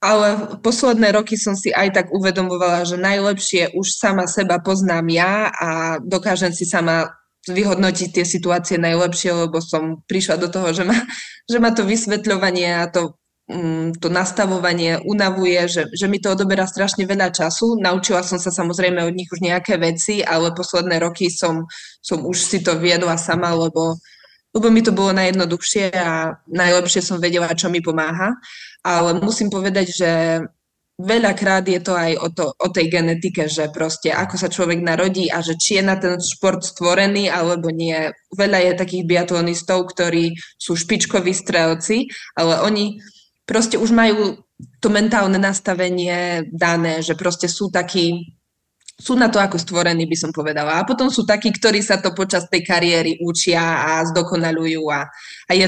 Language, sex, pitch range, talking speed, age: Slovak, female, 165-195 Hz, 165 wpm, 20-39